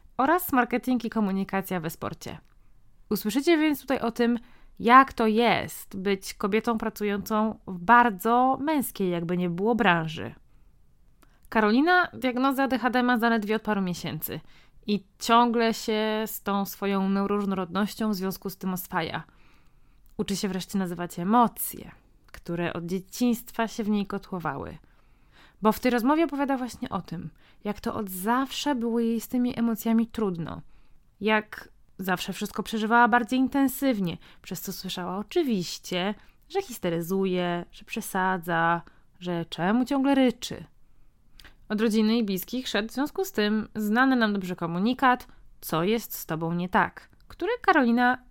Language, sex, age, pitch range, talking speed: Polish, female, 20-39, 190-245 Hz, 140 wpm